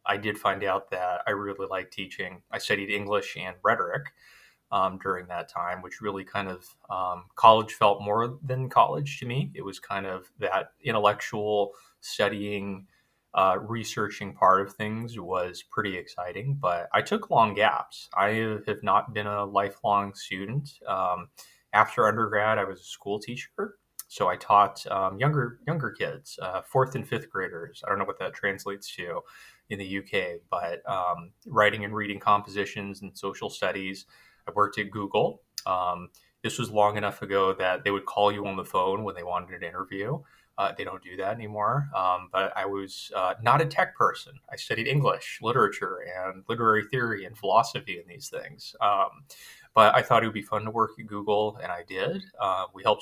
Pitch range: 95-110 Hz